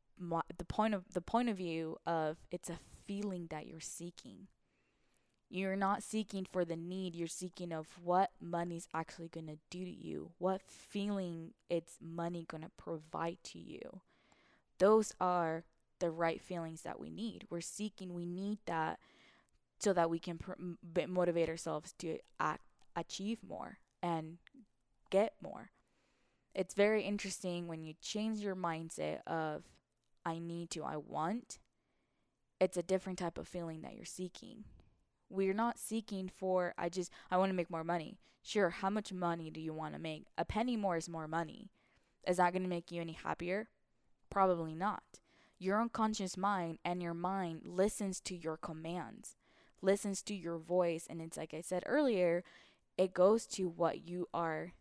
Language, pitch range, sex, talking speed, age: English, 165-195 Hz, female, 165 wpm, 20-39